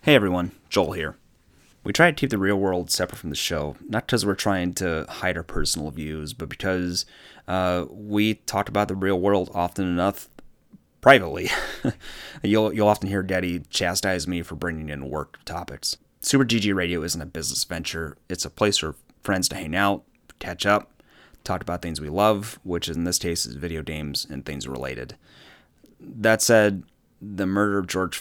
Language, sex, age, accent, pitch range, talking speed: English, male, 30-49, American, 80-100 Hz, 185 wpm